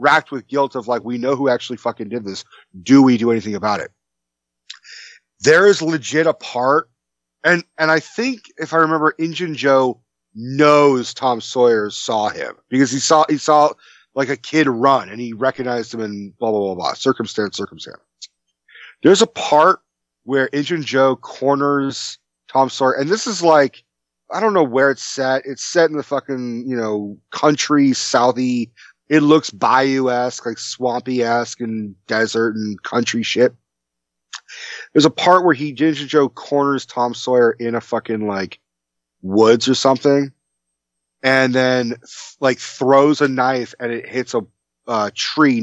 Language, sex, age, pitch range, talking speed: English, male, 30-49, 115-145 Hz, 165 wpm